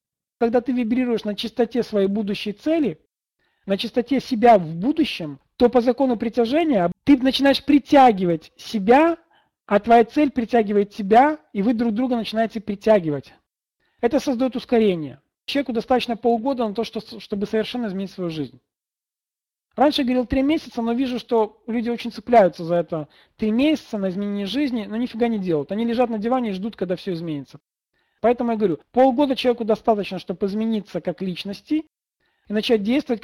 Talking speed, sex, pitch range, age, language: 160 wpm, male, 195-250 Hz, 40-59, Russian